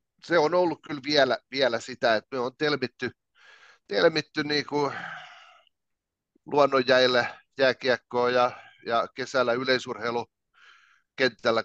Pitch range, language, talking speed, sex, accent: 115-135 Hz, Finnish, 95 wpm, male, native